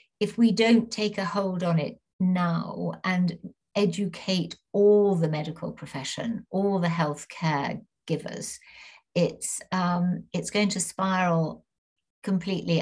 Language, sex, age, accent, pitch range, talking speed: English, female, 60-79, British, 170-210 Hz, 125 wpm